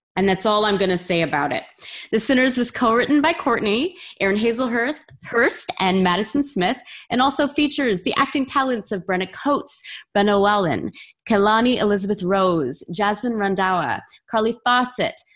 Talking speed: 150 wpm